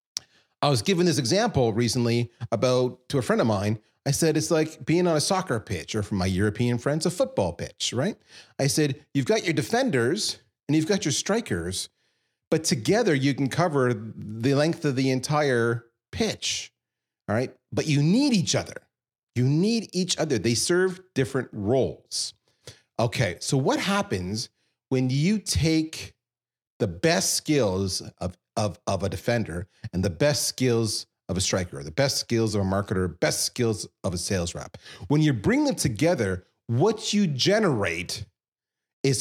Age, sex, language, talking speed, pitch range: 40-59, male, English, 170 wpm, 110-155 Hz